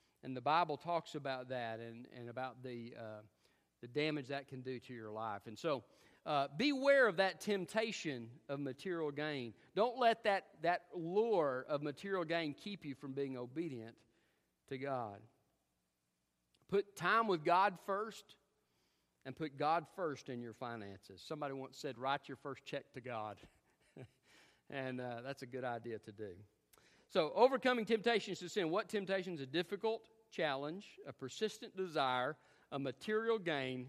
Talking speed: 160 wpm